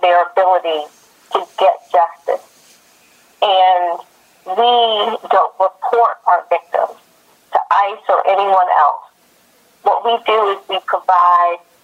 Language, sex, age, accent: English, female, 40-59, American